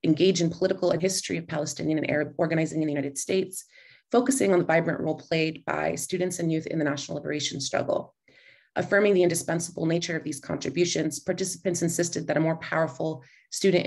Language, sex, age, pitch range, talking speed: English, female, 30-49, 150-175 Hz, 185 wpm